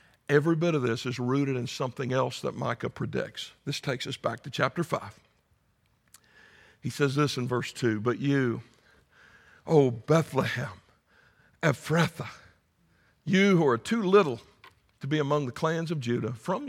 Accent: American